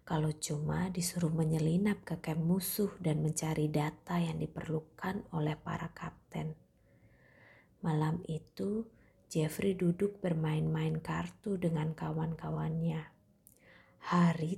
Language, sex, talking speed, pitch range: Indonesian, female, 100 wpm, 155-180 Hz